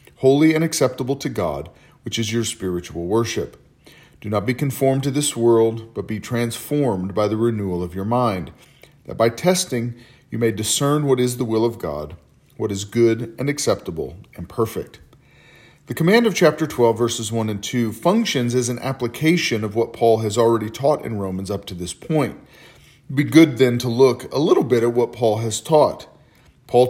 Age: 40-59